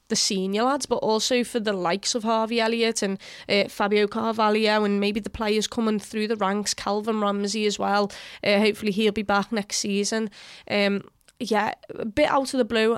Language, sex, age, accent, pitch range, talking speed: English, female, 20-39, British, 195-220 Hz, 195 wpm